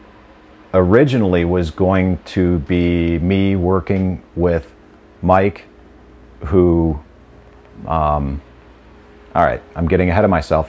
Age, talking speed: 40-59, 100 wpm